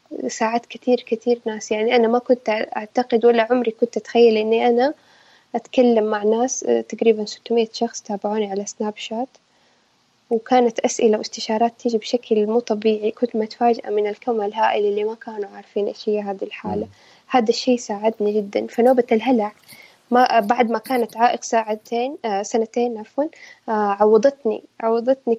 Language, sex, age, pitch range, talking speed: Arabic, female, 10-29, 215-250 Hz, 140 wpm